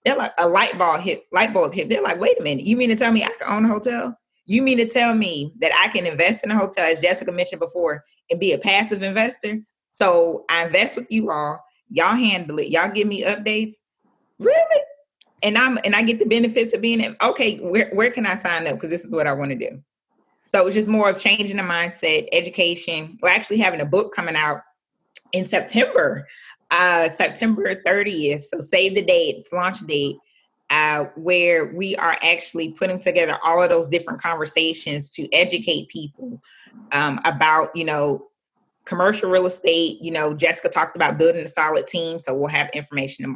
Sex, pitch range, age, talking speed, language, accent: female, 160-220 Hz, 20-39, 200 wpm, English, American